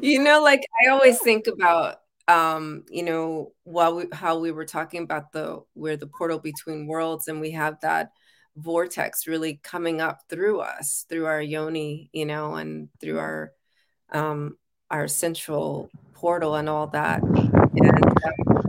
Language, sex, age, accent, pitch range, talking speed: English, female, 30-49, American, 150-170 Hz, 155 wpm